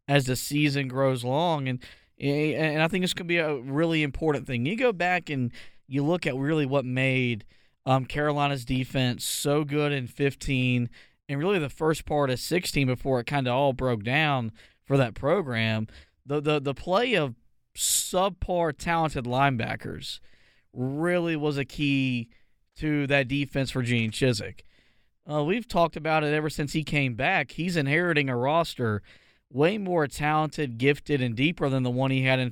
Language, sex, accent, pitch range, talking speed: English, male, American, 130-155 Hz, 175 wpm